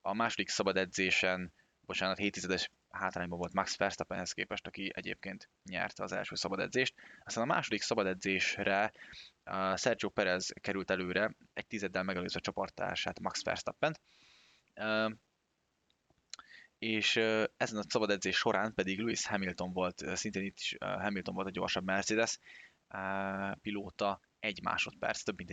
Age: 20-39